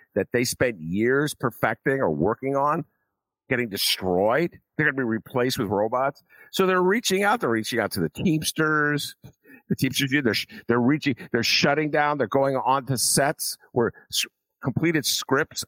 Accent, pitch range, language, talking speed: American, 120-180 Hz, English, 165 wpm